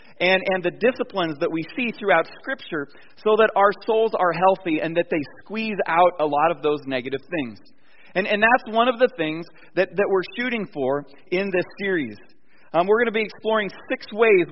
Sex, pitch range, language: male, 160-210 Hz, English